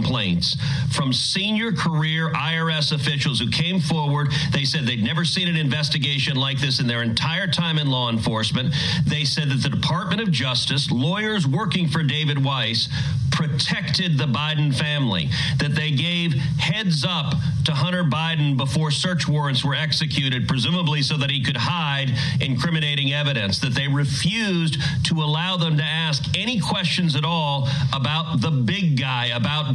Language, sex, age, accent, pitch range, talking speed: English, male, 40-59, American, 135-160 Hz, 160 wpm